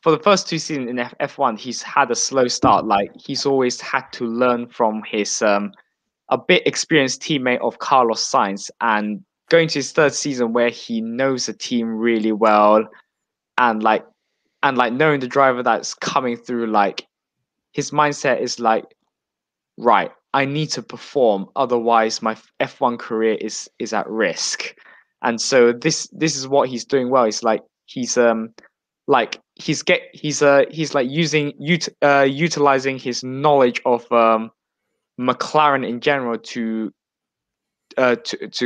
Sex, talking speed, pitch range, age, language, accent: male, 160 wpm, 115-145 Hz, 20-39, English, British